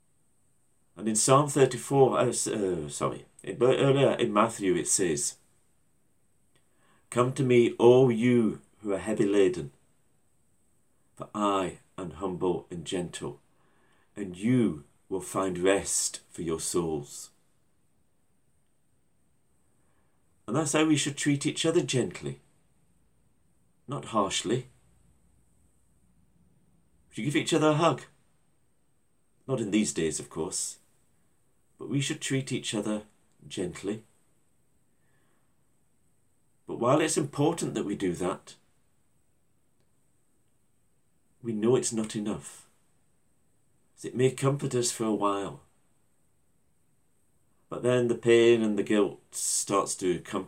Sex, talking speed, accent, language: male, 115 wpm, British, English